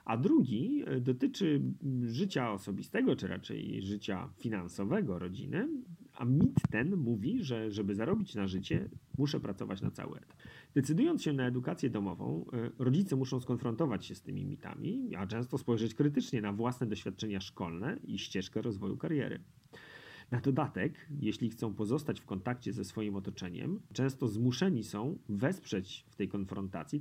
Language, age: Polish, 40-59